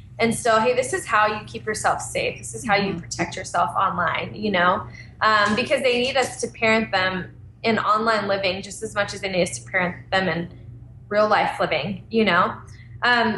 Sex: female